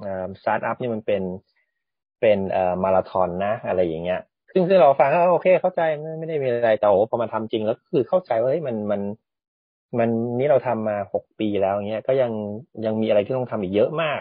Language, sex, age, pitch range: Thai, male, 20-39, 100-125 Hz